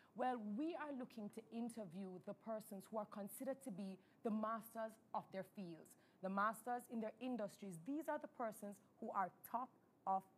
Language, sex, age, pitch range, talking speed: English, female, 30-49, 200-250 Hz, 180 wpm